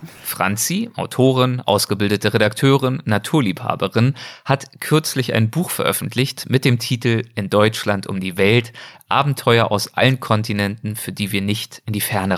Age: 30-49